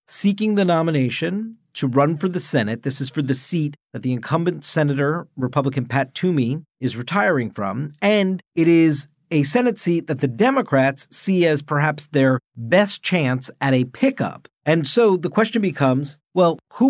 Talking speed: 170 wpm